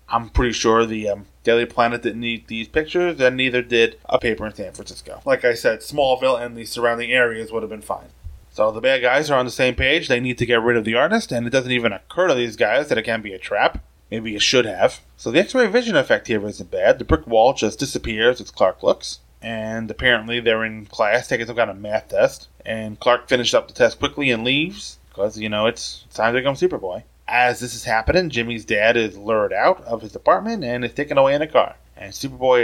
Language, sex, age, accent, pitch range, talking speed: English, male, 20-39, American, 110-135 Hz, 245 wpm